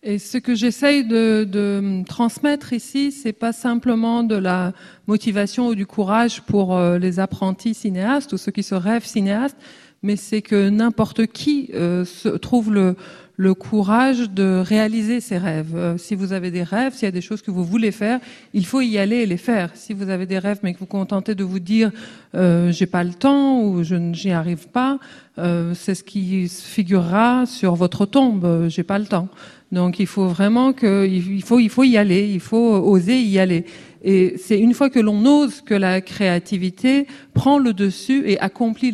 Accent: French